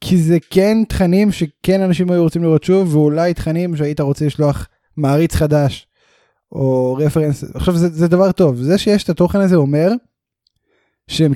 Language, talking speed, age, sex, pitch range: Hebrew, 165 wpm, 10-29, male, 140-185 Hz